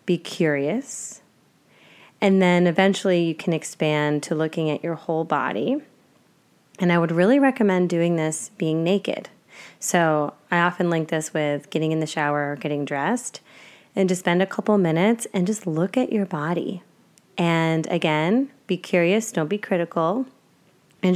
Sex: female